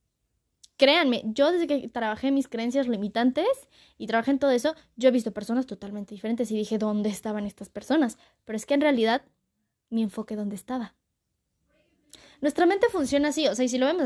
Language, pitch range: Spanish, 220-285 Hz